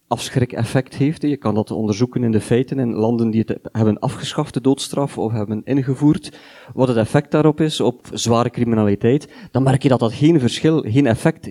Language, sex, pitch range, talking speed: Dutch, male, 115-145 Hz, 200 wpm